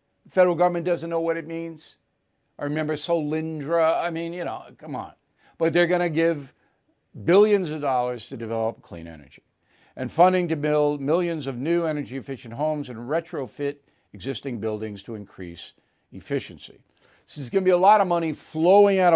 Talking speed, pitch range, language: 165 wpm, 130-170 Hz, English